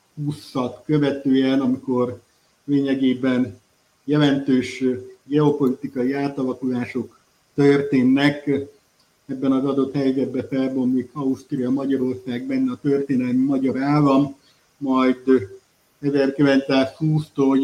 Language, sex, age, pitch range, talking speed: Hungarian, male, 50-69, 130-145 Hz, 75 wpm